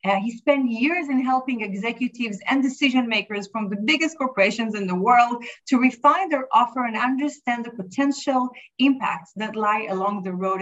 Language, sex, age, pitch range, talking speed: English, female, 30-49, 205-260 Hz, 175 wpm